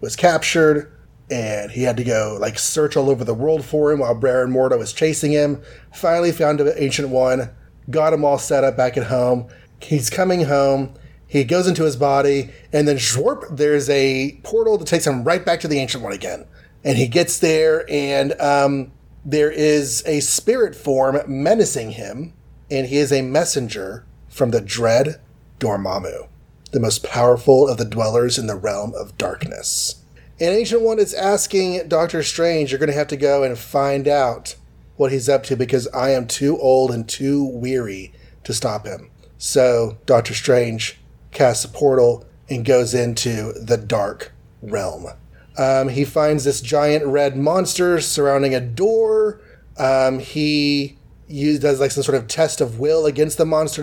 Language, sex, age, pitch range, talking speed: English, male, 30-49, 125-150 Hz, 175 wpm